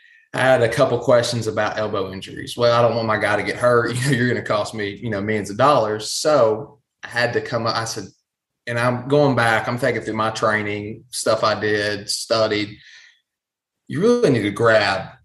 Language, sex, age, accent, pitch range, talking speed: English, male, 20-39, American, 105-120 Hz, 210 wpm